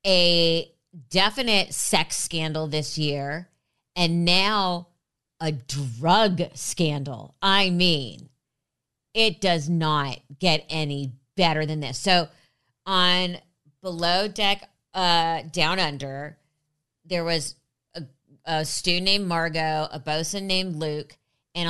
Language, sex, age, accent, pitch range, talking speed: English, female, 30-49, American, 145-180 Hz, 110 wpm